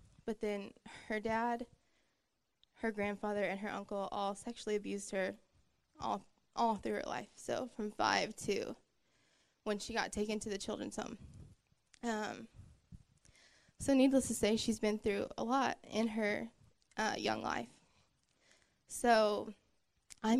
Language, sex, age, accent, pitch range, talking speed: English, female, 10-29, American, 195-225 Hz, 140 wpm